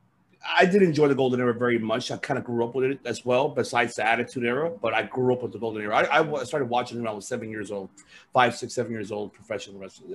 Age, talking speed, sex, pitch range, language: 30-49, 285 wpm, male, 130-185 Hz, English